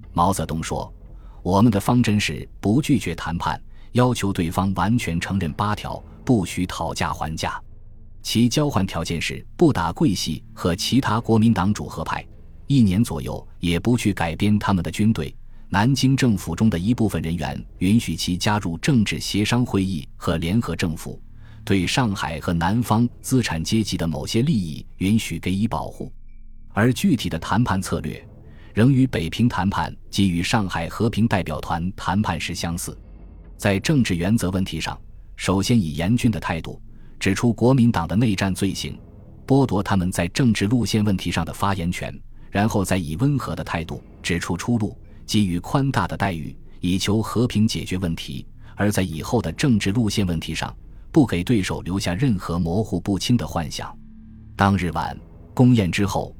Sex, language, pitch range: male, Chinese, 85-110 Hz